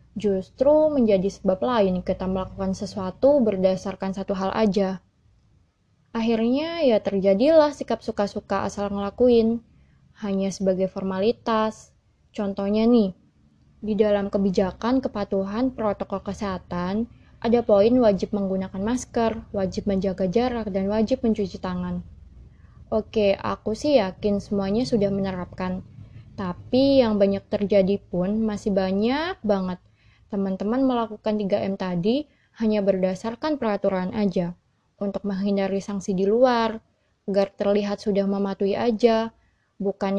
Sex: female